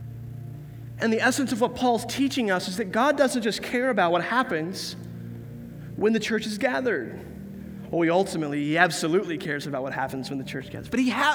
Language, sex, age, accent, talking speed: English, male, 20-39, American, 210 wpm